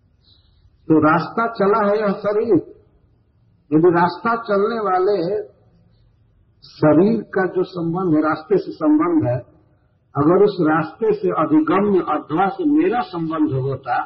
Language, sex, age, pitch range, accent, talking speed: Hindi, male, 50-69, 110-185 Hz, native, 130 wpm